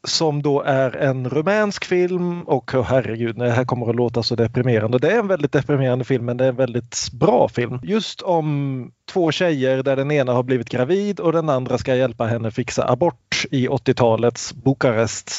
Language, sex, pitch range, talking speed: Swedish, male, 115-140 Hz, 195 wpm